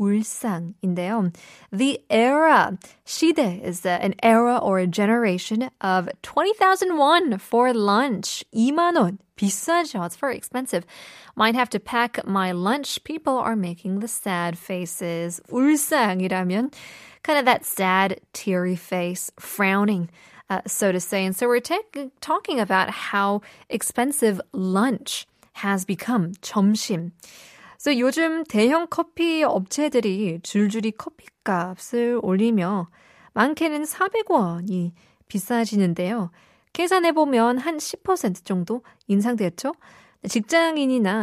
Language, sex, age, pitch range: Korean, female, 20-39, 190-250 Hz